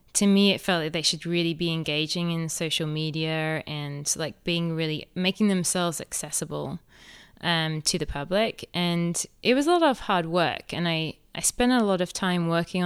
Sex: female